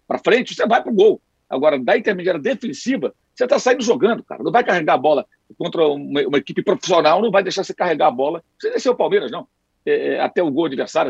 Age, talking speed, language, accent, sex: 60-79, 230 wpm, Portuguese, Brazilian, male